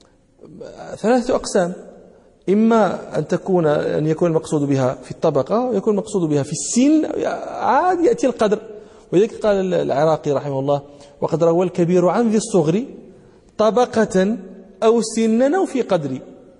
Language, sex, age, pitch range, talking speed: English, male, 40-59, 135-205 Hz, 130 wpm